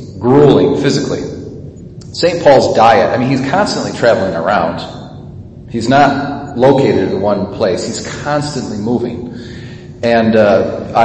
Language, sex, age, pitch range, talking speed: English, male, 40-59, 110-135 Hz, 120 wpm